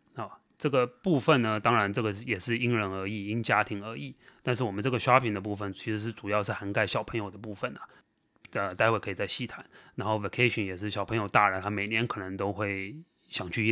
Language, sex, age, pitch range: Chinese, male, 30-49, 100-125 Hz